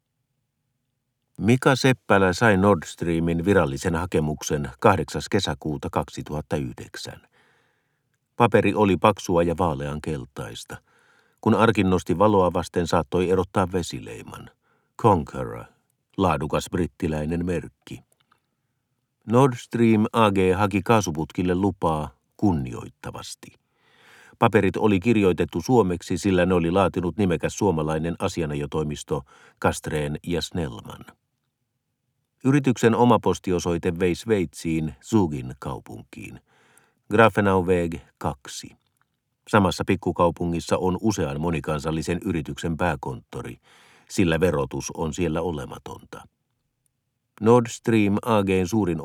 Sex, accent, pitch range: male, native, 85-115 Hz